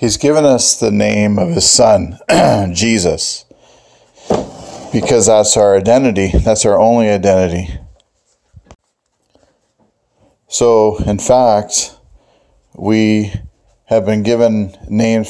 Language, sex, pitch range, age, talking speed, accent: English, male, 95-110 Hz, 40-59, 100 wpm, American